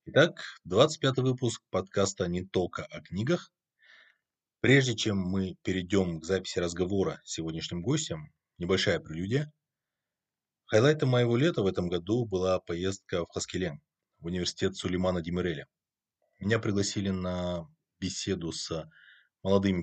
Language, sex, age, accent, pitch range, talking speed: Russian, male, 20-39, native, 85-115 Hz, 120 wpm